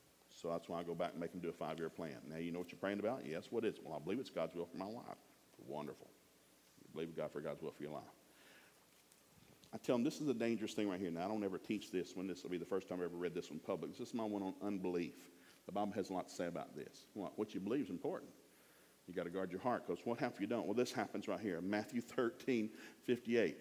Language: English